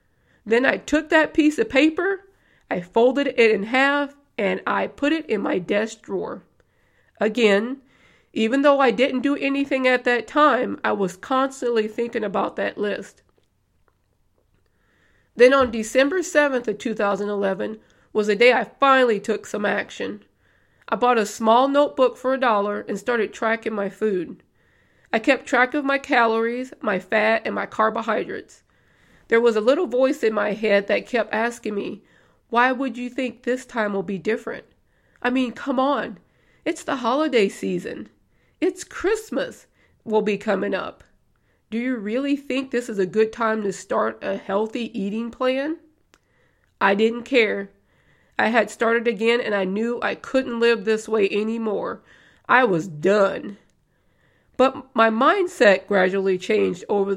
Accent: American